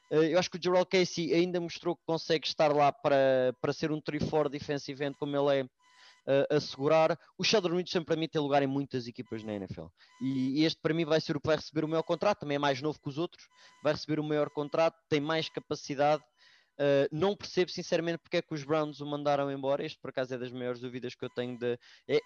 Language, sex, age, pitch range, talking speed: English, male, 20-39, 145-165 Hz, 245 wpm